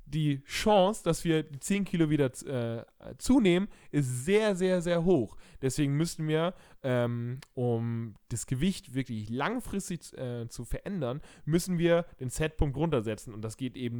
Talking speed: 155 wpm